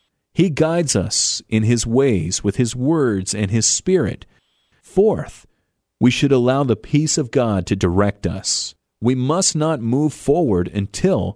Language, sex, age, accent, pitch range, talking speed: English, male, 40-59, American, 105-150 Hz, 155 wpm